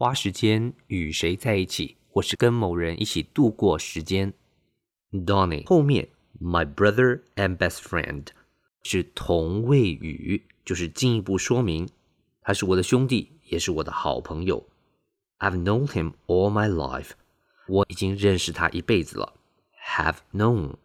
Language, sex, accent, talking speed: English, male, Chinese, 60 wpm